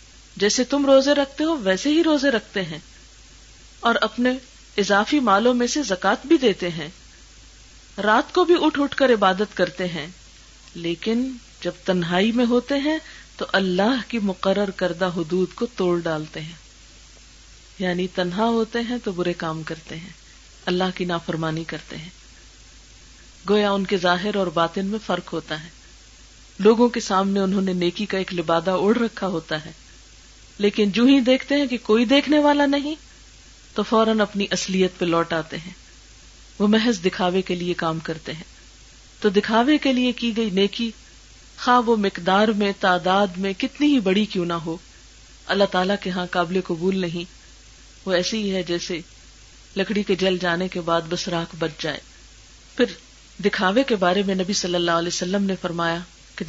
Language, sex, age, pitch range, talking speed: Urdu, female, 50-69, 170-220 Hz, 170 wpm